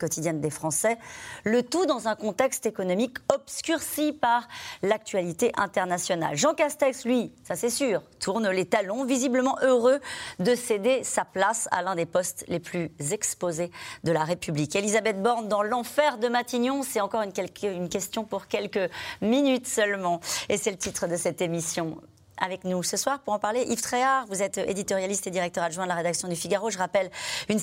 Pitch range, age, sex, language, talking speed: 175-240 Hz, 40-59, female, French, 180 wpm